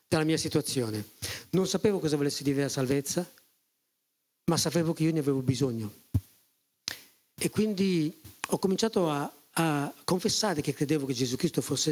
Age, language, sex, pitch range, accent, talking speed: 40-59, Italian, male, 140-180 Hz, native, 150 wpm